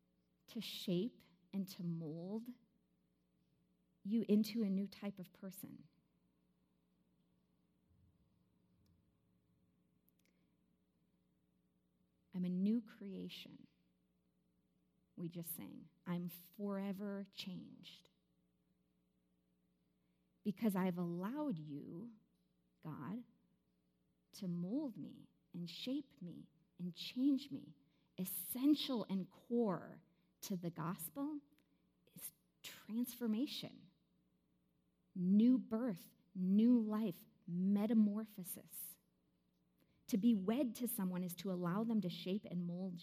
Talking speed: 85 wpm